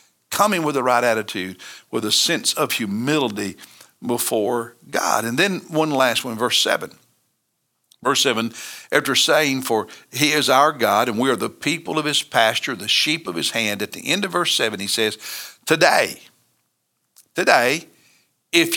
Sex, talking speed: male, 165 wpm